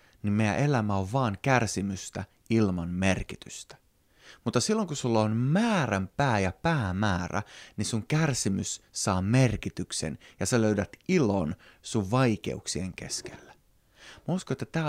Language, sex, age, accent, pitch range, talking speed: Finnish, male, 30-49, native, 100-125 Hz, 135 wpm